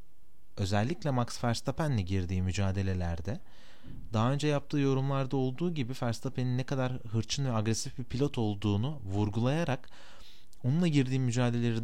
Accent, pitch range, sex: native, 100-135 Hz, male